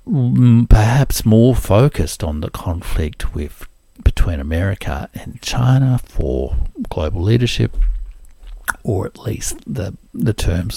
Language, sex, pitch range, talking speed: English, male, 80-105 Hz, 110 wpm